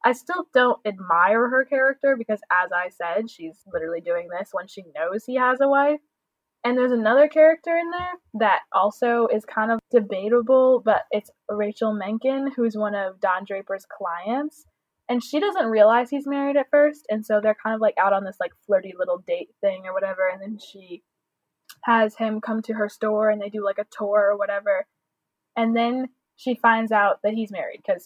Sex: female